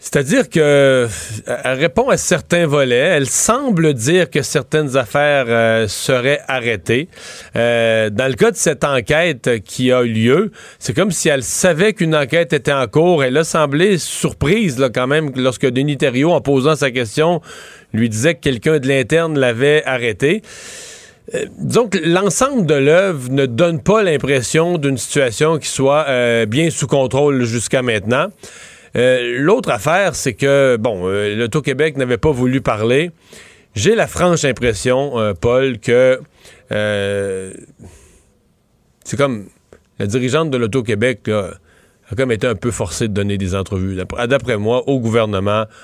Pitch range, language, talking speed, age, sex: 115-150 Hz, French, 155 wpm, 40-59, male